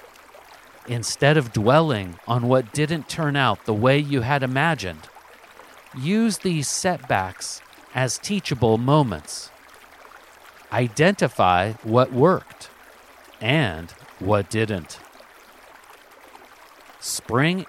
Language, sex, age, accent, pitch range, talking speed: English, male, 50-69, American, 110-155 Hz, 90 wpm